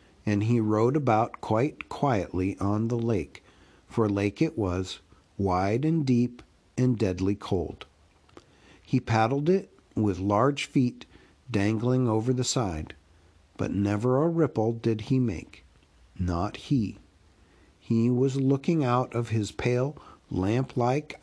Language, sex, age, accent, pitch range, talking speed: English, male, 50-69, American, 100-130 Hz, 130 wpm